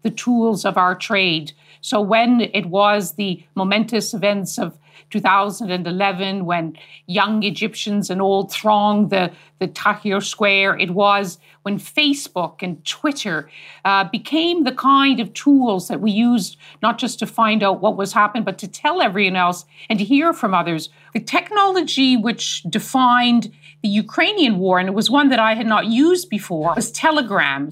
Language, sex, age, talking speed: English, female, 50-69, 165 wpm